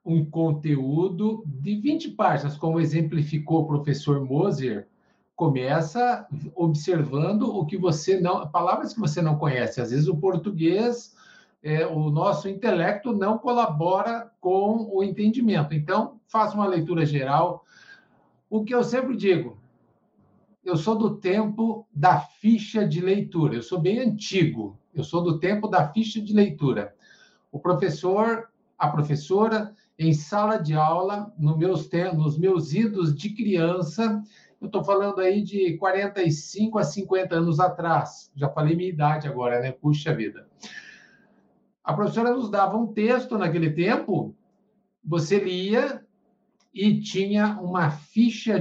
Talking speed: 135 wpm